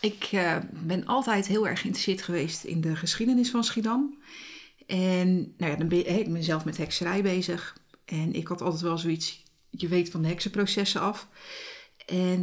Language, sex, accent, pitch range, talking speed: Dutch, female, Dutch, 170-205 Hz, 175 wpm